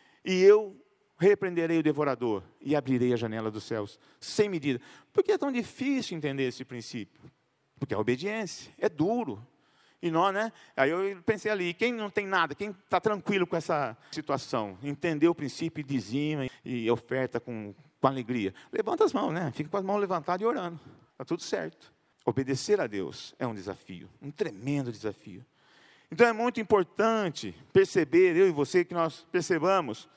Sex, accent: male, Brazilian